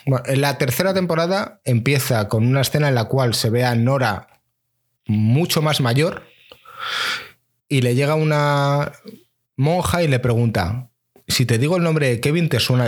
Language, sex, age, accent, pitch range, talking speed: Spanish, male, 30-49, Spanish, 115-145 Hz, 170 wpm